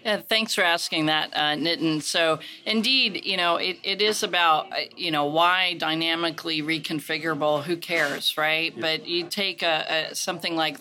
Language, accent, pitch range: English, American, 150-165 Hz